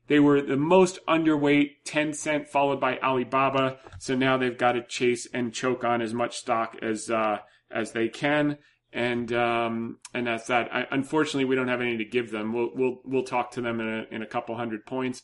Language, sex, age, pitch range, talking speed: English, male, 30-49, 115-140 Hz, 215 wpm